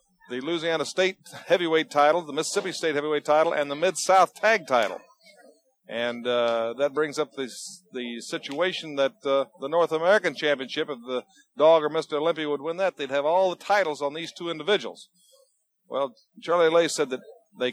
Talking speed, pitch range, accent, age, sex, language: 180 wpm, 145-175 Hz, American, 50-69, male, English